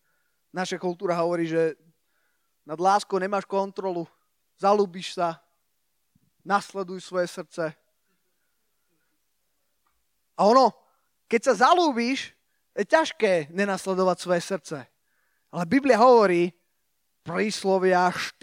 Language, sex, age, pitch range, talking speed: Slovak, male, 20-39, 180-220 Hz, 90 wpm